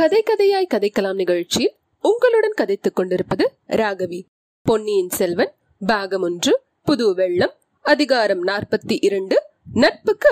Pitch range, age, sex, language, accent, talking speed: 260-425 Hz, 30-49, female, Tamil, native, 75 wpm